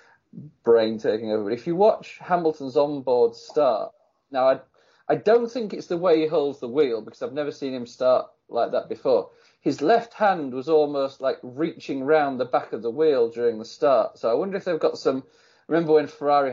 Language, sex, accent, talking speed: English, male, British, 210 wpm